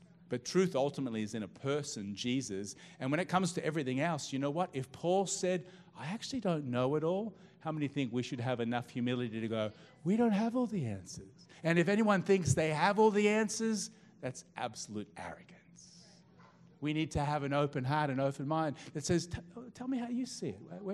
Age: 40-59